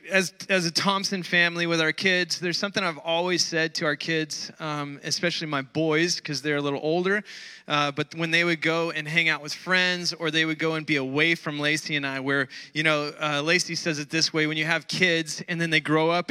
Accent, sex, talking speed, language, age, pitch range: American, male, 240 wpm, English, 20-39, 155-190 Hz